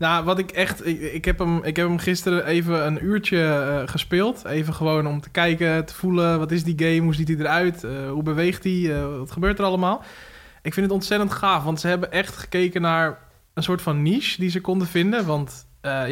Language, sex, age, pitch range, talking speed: Dutch, male, 20-39, 155-185 Hz, 215 wpm